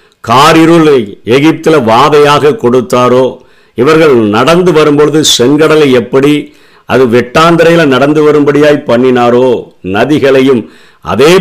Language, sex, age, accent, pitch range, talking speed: Tamil, male, 50-69, native, 120-145 Hz, 85 wpm